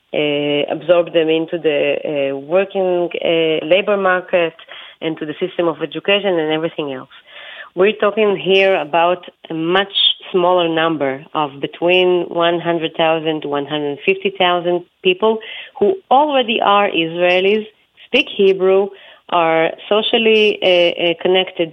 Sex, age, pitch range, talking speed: female, 30-49, 160-195 Hz, 120 wpm